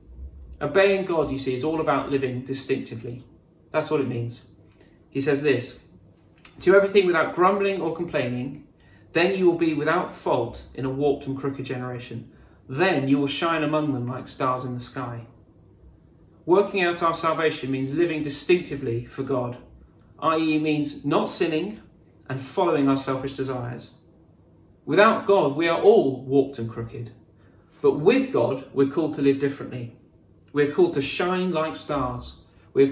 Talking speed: 155 wpm